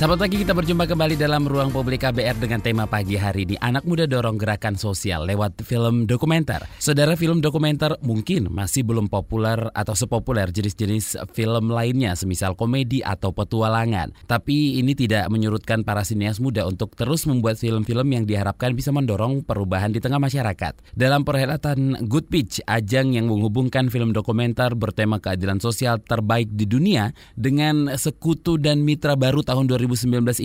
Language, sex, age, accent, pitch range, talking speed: Indonesian, male, 20-39, native, 105-135 Hz, 160 wpm